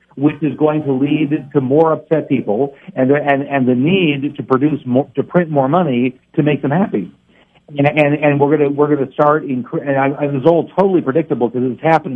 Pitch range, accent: 125-150 Hz, American